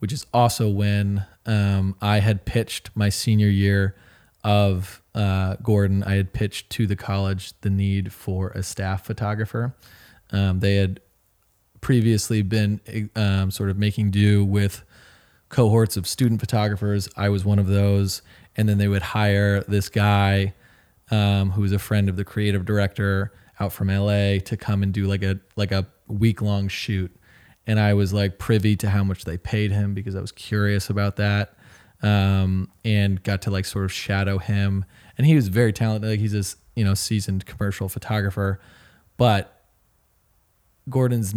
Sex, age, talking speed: male, 20-39, 170 wpm